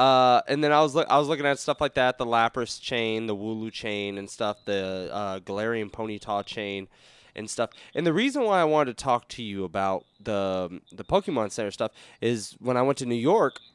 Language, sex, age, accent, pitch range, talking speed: English, male, 20-39, American, 105-150 Hz, 225 wpm